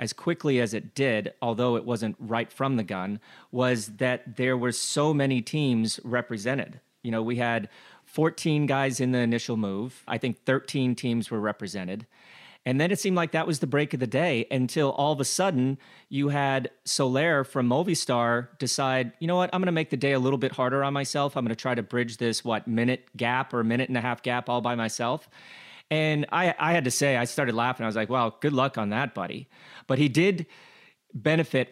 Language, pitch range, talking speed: English, 120-145 Hz, 215 wpm